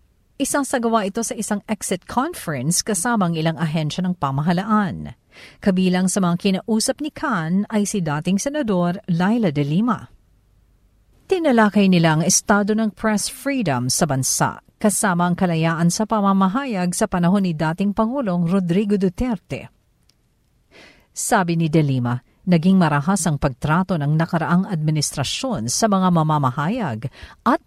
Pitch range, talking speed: 170-235 Hz, 130 wpm